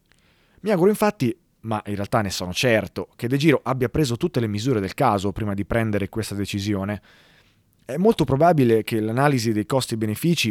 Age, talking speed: 30-49, 175 wpm